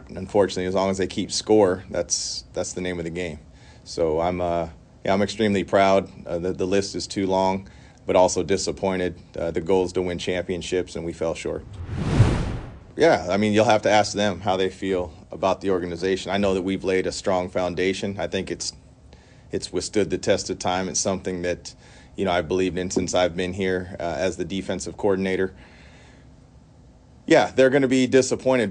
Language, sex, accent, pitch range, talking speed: English, male, American, 90-110 Hz, 200 wpm